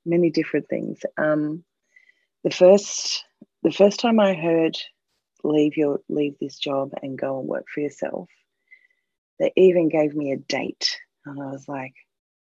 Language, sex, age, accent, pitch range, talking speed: English, female, 30-49, Australian, 145-190 Hz, 155 wpm